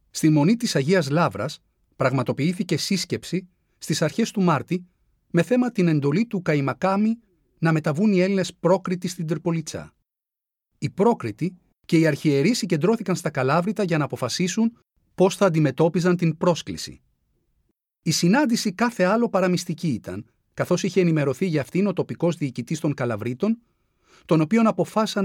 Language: Greek